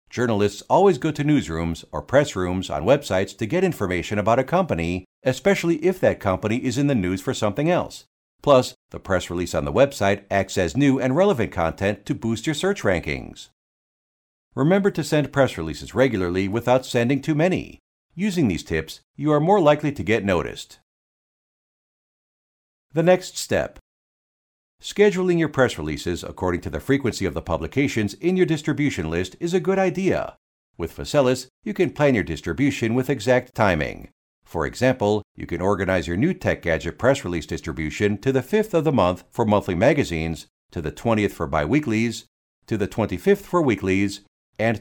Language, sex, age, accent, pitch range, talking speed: English, male, 50-69, American, 95-150 Hz, 175 wpm